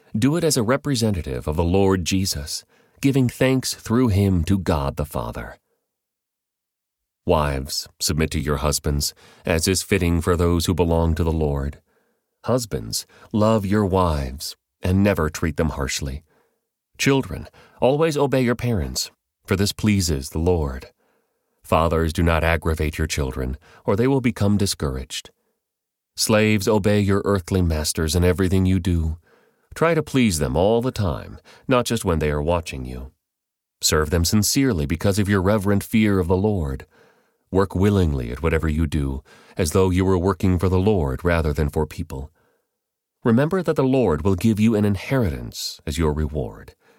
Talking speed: 160 wpm